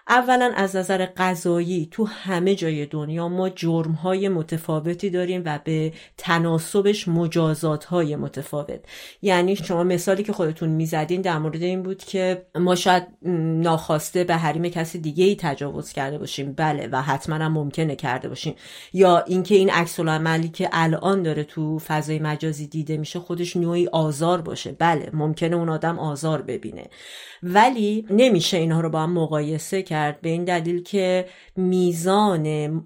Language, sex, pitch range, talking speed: Persian, female, 155-180 Hz, 150 wpm